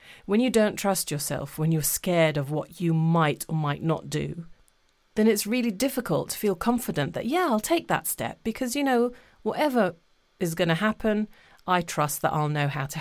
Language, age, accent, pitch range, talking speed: English, 40-59, British, 160-225 Hz, 205 wpm